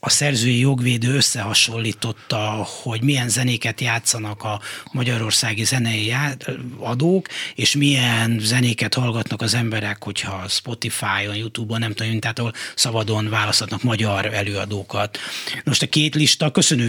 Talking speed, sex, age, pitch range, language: 115 wpm, male, 30-49, 115-140 Hz, Hungarian